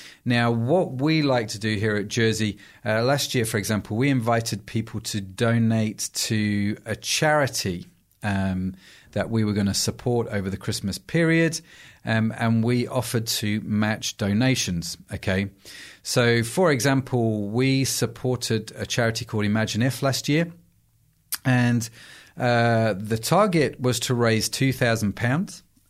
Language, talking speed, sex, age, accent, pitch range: English, 140 wpm, male, 40-59, British, 105-130 Hz